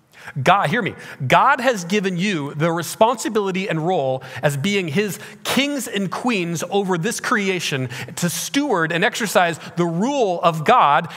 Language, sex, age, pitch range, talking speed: English, male, 40-59, 125-170 Hz, 150 wpm